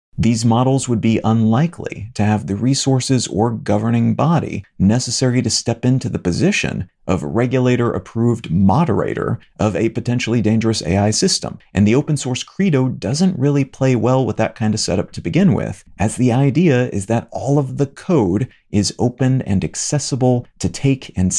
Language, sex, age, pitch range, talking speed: English, male, 40-59, 110-130 Hz, 170 wpm